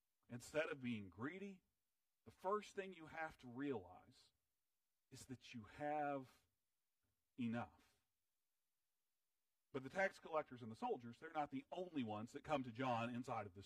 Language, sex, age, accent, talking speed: English, male, 40-59, American, 155 wpm